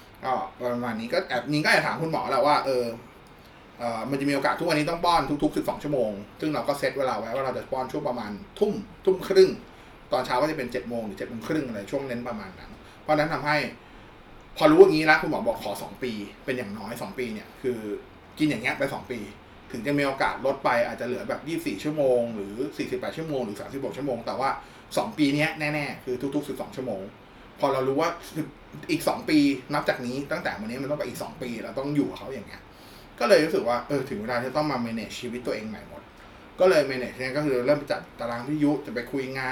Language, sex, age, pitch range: Thai, male, 20-39, 125-150 Hz